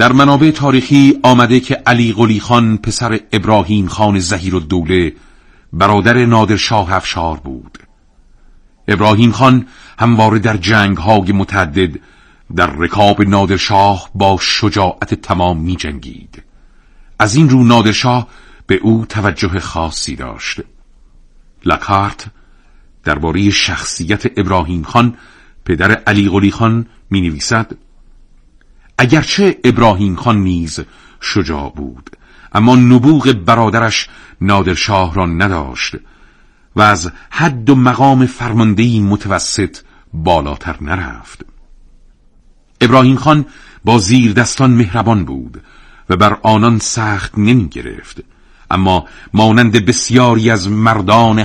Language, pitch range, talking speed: Persian, 95-120 Hz, 105 wpm